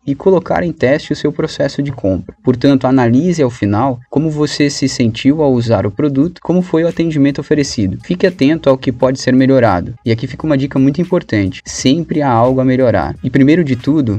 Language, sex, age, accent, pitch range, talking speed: Portuguese, male, 20-39, Brazilian, 120-145 Hz, 205 wpm